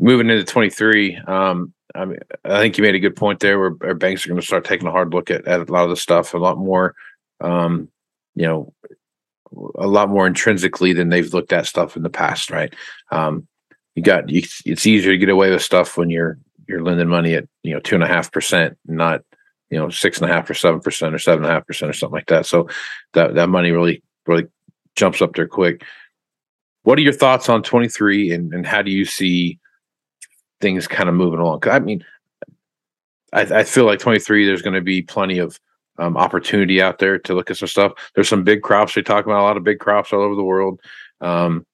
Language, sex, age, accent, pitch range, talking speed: English, male, 40-59, American, 85-100 Hz, 230 wpm